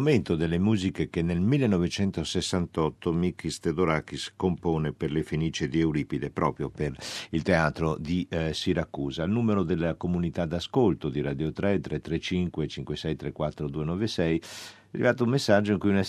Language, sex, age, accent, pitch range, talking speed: Italian, male, 50-69, native, 80-105 Hz, 155 wpm